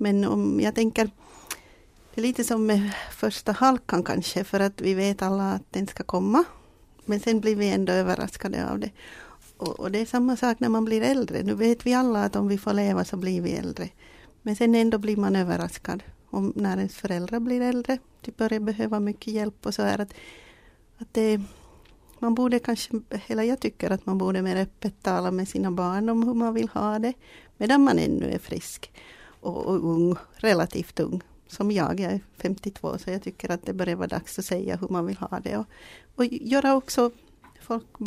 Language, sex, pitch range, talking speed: Swedish, female, 185-230 Hz, 205 wpm